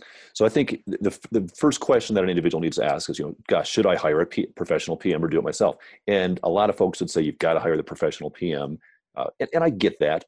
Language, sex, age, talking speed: English, male, 40-59, 285 wpm